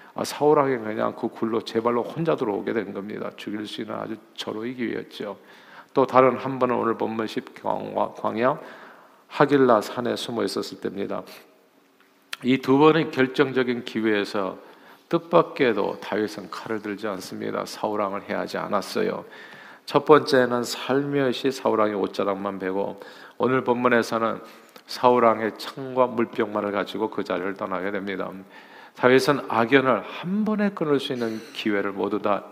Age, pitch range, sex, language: 40-59, 110-140 Hz, male, Korean